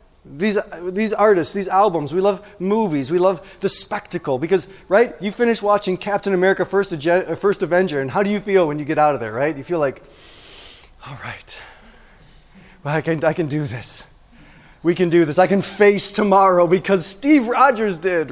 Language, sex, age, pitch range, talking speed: English, male, 20-39, 145-210 Hz, 195 wpm